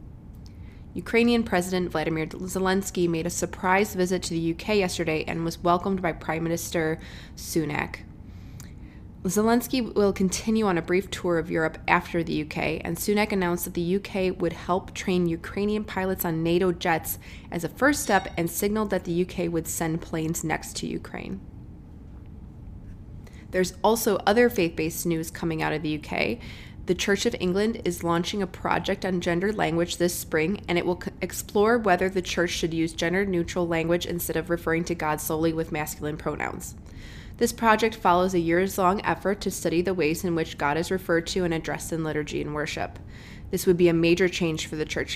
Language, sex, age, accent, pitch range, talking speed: English, female, 20-39, American, 160-190 Hz, 180 wpm